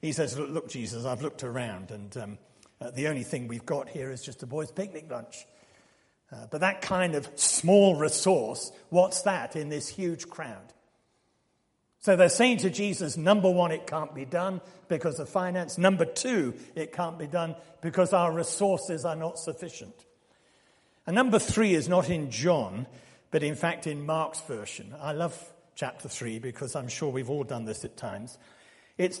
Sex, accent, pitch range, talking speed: male, British, 140-180 Hz, 185 wpm